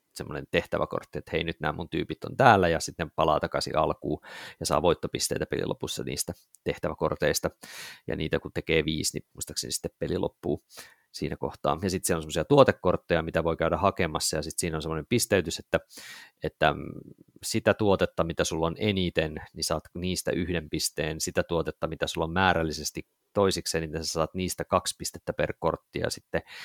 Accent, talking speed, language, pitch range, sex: native, 180 wpm, Finnish, 80-100 Hz, male